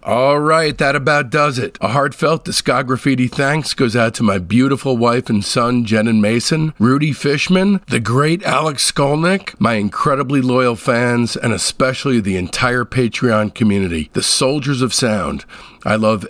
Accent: American